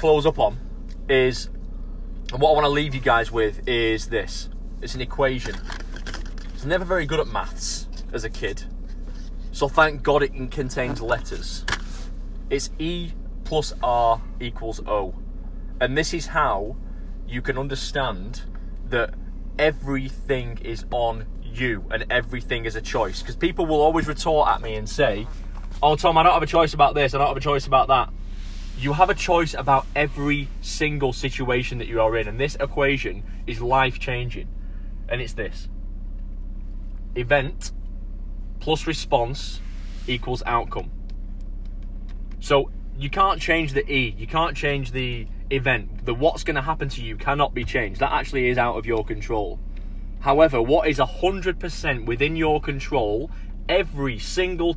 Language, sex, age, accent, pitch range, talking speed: English, male, 20-39, British, 110-145 Hz, 160 wpm